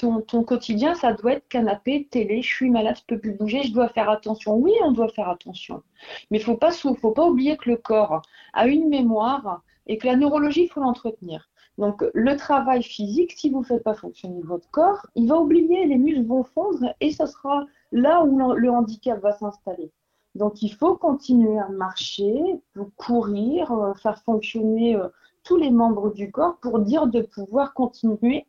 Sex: female